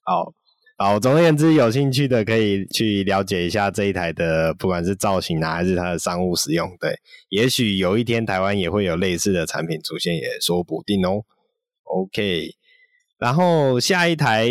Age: 20-39